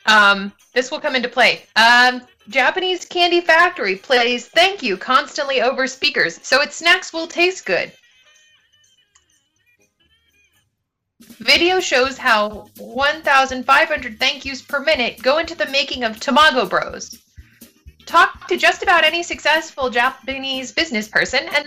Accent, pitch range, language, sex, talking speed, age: American, 230-320 Hz, English, female, 130 wpm, 30-49